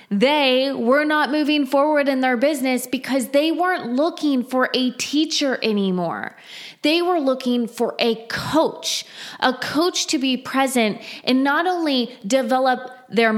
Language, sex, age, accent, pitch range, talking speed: English, female, 20-39, American, 230-285 Hz, 145 wpm